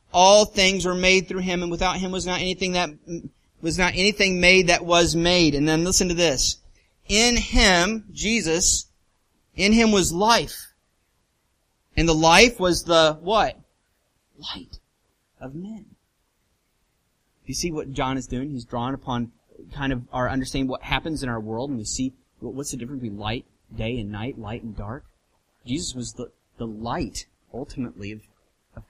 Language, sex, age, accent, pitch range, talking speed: English, male, 30-49, American, 115-175 Hz, 170 wpm